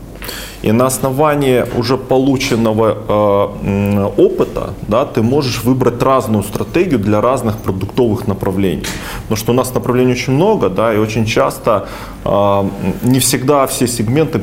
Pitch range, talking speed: 105-130 Hz, 135 wpm